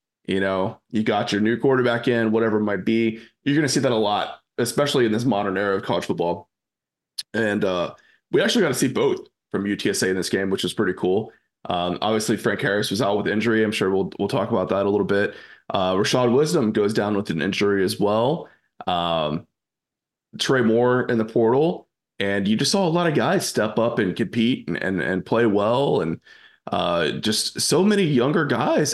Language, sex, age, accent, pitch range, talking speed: English, male, 20-39, American, 100-125 Hz, 210 wpm